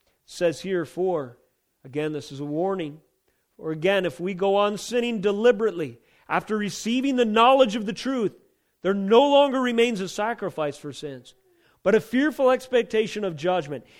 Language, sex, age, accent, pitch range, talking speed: English, male, 40-59, American, 155-215 Hz, 160 wpm